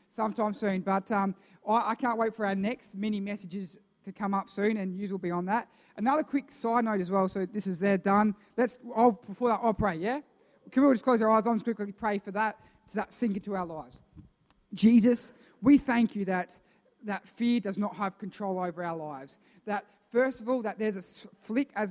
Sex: male